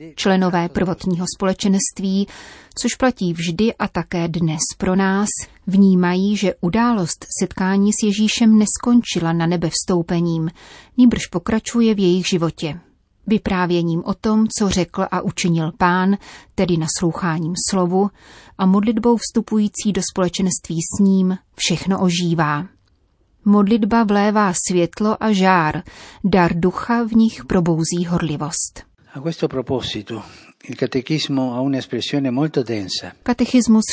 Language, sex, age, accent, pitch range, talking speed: Czech, female, 30-49, native, 170-200 Hz, 105 wpm